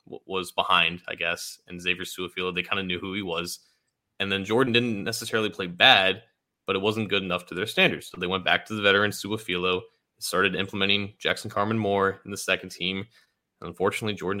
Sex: male